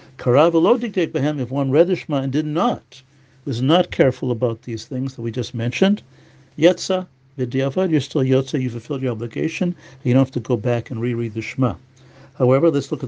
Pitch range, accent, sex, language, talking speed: 120-150 Hz, American, male, English, 180 wpm